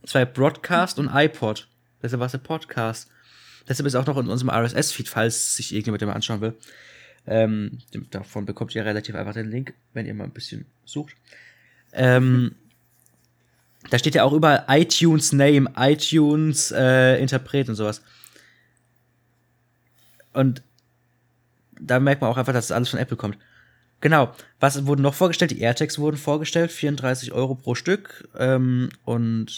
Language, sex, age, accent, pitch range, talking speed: German, male, 20-39, German, 115-140 Hz, 155 wpm